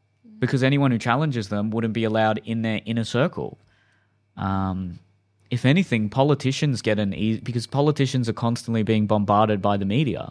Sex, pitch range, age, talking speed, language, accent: male, 105-125 Hz, 20-39, 165 wpm, English, Australian